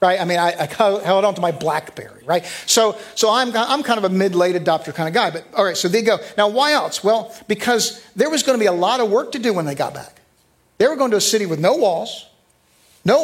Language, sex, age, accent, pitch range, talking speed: English, male, 50-69, American, 155-205 Hz, 275 wpm